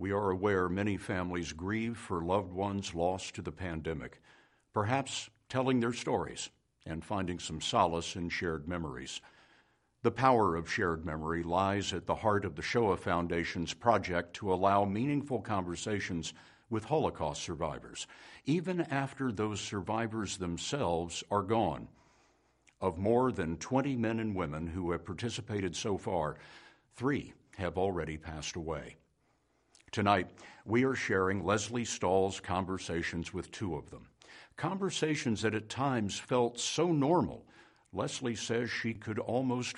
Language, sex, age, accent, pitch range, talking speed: English, male, 60-79, American, 90-120 Hz, 140 wpm